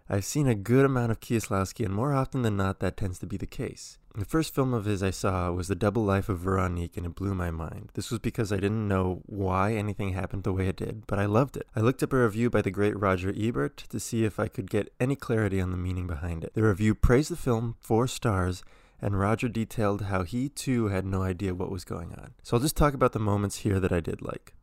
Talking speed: 265 wpm